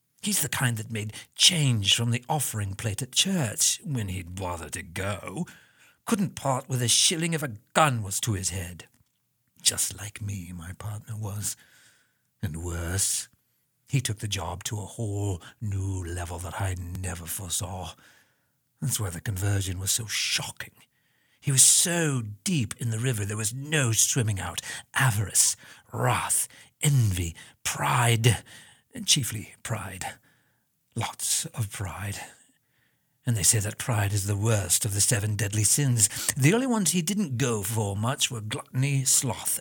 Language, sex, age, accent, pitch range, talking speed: English, male, 50-69, British, 100-130 Hz, 155 wpm